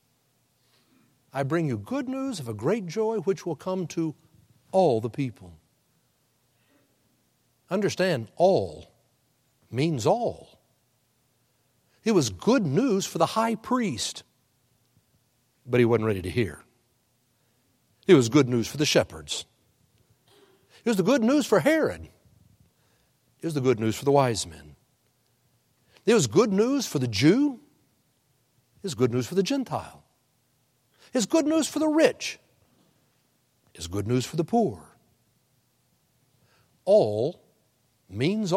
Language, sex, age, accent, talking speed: English, male, 60-79, American, 130 wpm